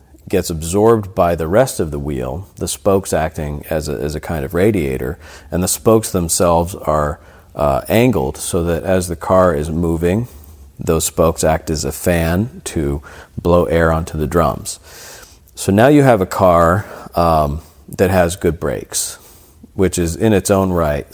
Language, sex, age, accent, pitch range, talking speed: English, male, 40-59, American, 80-95 Hz, 175 wpm